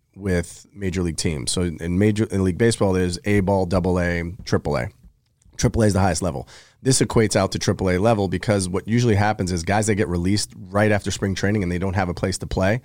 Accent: American